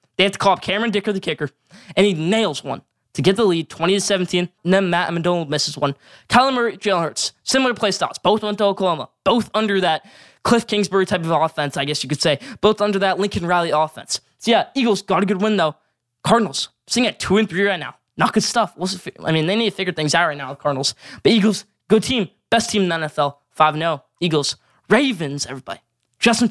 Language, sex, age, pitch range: English, male, 20-39, 150-215 Hz